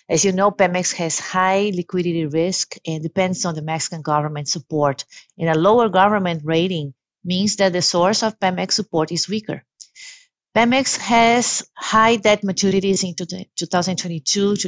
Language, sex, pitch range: English, female, 175-225 Hz